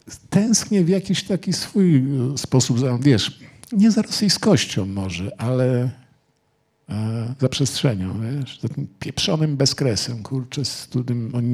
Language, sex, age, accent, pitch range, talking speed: Polish, male, 50-69, native, 100-135 Hz, 120 wpm